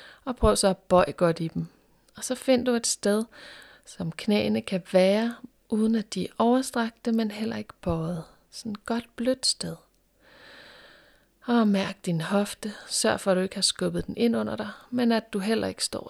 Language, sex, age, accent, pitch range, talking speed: Danish, female, 30-49, native, 195-230 Hz, 200 wpm